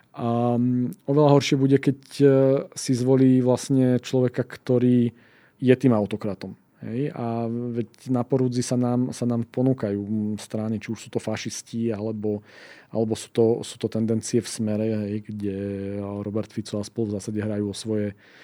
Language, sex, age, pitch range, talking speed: Slovak, male, 40-59, 110-125 Hz, 160 wpm